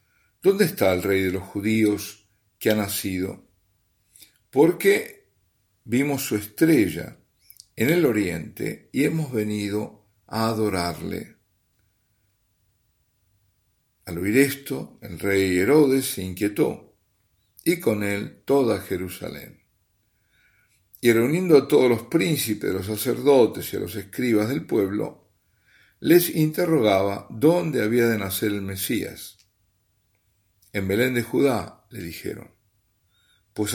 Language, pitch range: Spanish, 100-115 Hz